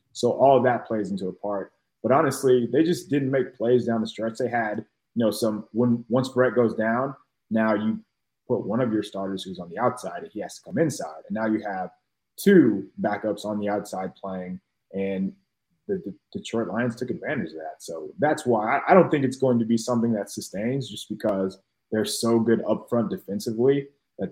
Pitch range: 105-125 Hz